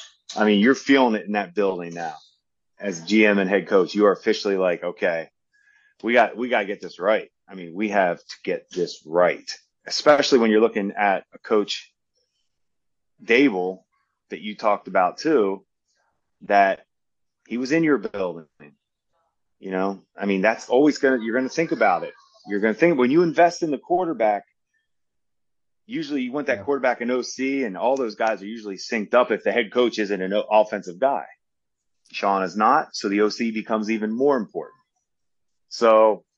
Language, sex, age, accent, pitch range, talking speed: English, male, 30-49, American, 100-140 Hz, 185 wpm